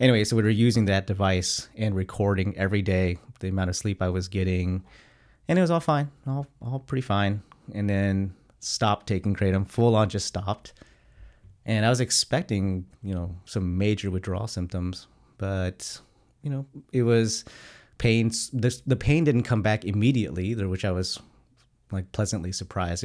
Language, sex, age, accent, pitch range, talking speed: English, male, 30-49, American, 95-120 Hz, 170 wpm